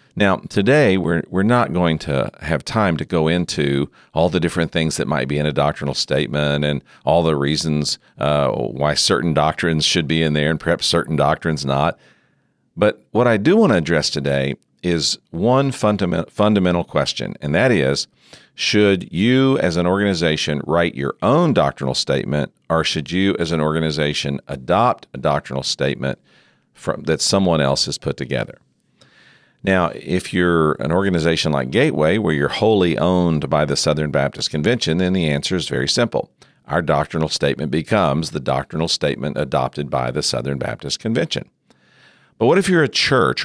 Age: 50-69